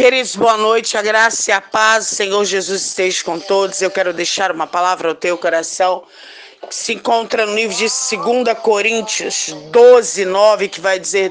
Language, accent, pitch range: Portuguese, Brazilian, 225-335 Hz